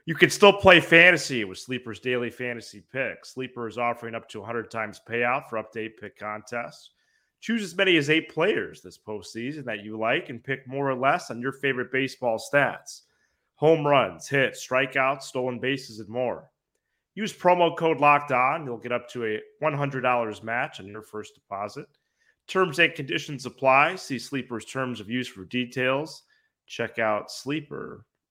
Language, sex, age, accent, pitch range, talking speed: English, male, 30-49, American, 115-145 Hz, 170 wpm